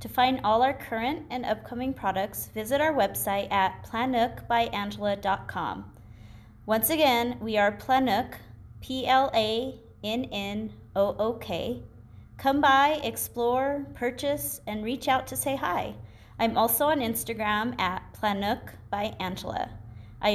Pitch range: 150-235 Hz